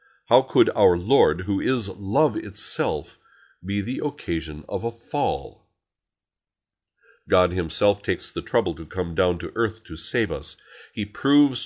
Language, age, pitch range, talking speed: English, 50-69, 85-120 Hz, 150 wpm